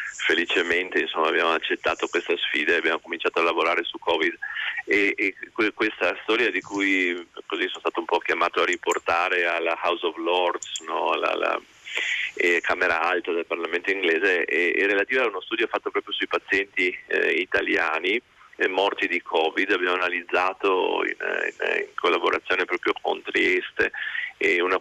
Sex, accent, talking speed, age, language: male, native, 165 wpm, 30-49, Italian